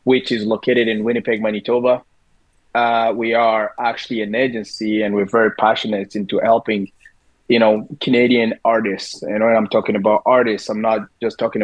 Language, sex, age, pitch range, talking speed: English, male, 20-39, 105-120 Hz, 165 wpm